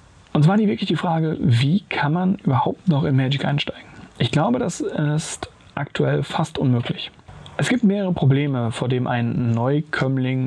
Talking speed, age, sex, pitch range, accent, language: 165 wpm, 30-49, male, 120-155 Hz, German, German